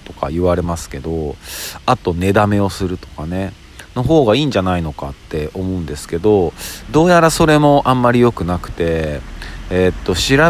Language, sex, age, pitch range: Japanese, male, 40-59, 85-120 Hz